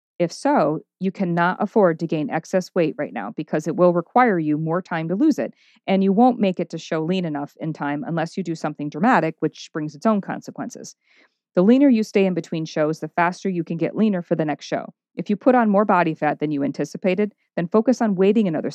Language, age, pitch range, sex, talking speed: English, 40-59, 165-210 Hz, female, 235 wpm